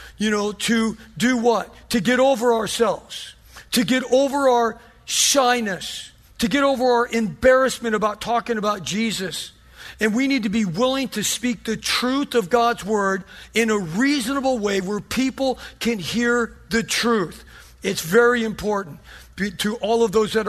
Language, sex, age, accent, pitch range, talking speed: English, male, 50-69, American, 220-265 Hz, 160 wpm